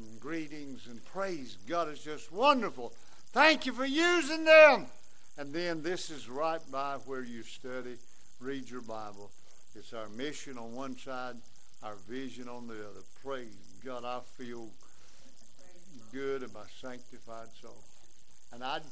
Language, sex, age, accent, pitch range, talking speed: English, male, 60-79, American, 120-165 Hz, 140 wpm